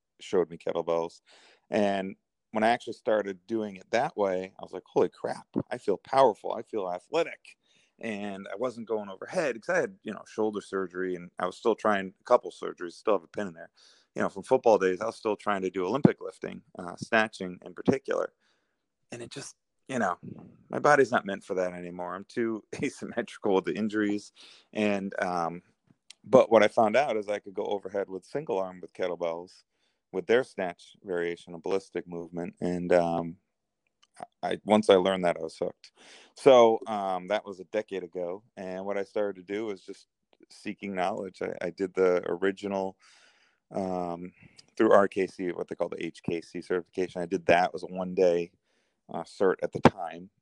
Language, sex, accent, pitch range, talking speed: English, male, American, 90-100 Hz, 195 wpm